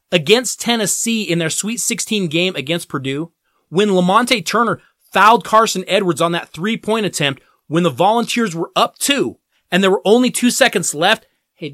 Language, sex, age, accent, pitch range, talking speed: English, male, 30-49, American, 175-255 Hz, 170 wpm